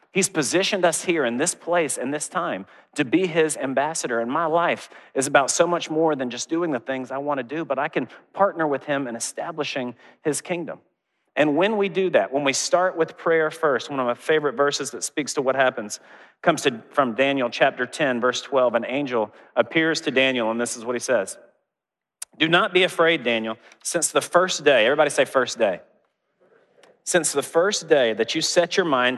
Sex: male